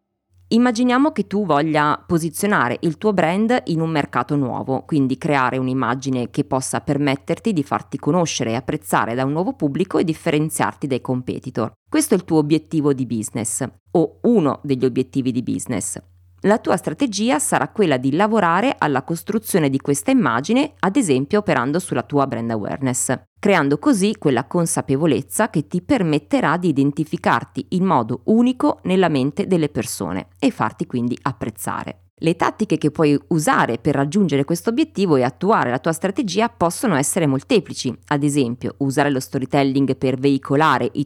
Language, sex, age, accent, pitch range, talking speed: Italian, female, 30-49, native, 130-175 Hz, 160 wpm